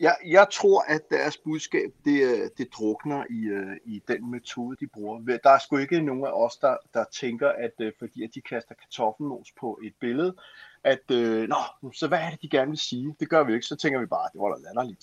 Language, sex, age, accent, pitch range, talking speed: Danish, male, 30-49, native, 125-155 Hz, 240 wpm